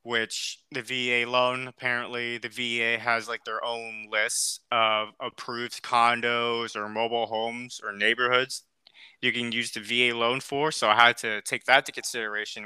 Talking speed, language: 165 wpm, English